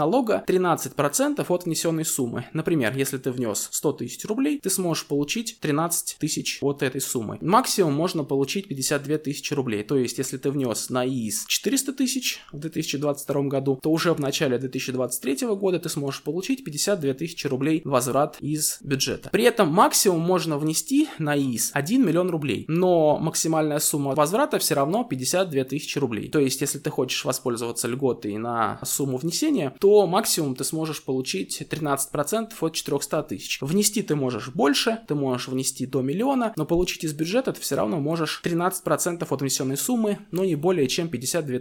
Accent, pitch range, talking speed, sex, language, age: native, 135-175 Hz, 170 wpm, male, Russian, 20-39